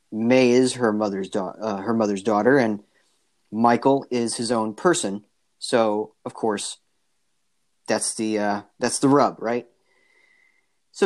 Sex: male